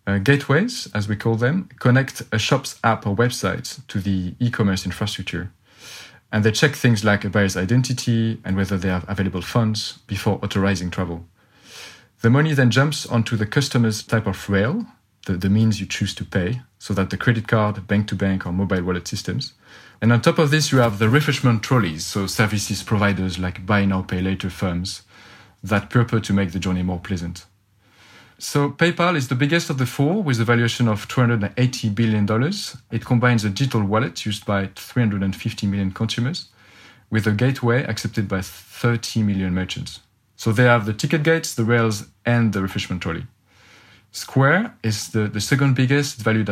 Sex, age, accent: male, 40-59, French